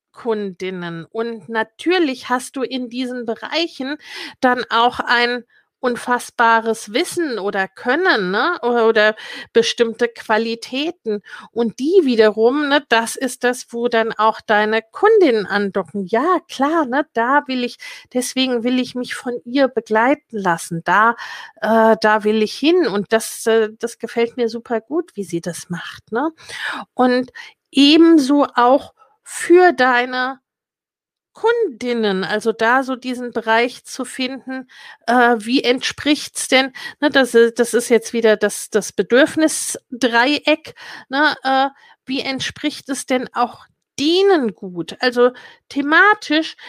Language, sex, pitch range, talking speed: German, female, 230-285 Hz, 130 wpm